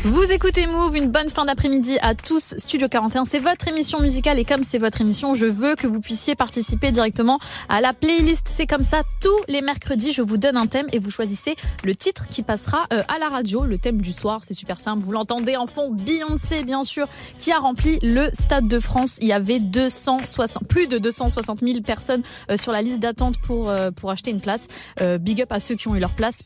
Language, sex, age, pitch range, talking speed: French, female, 20-39, 225-290 Hz, 225 wpm